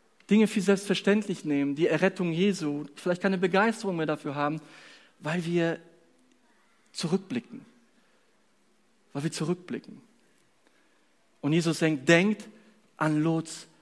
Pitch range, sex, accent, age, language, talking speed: 145-210 Hz, male, German, 40-59, German, 110 wpm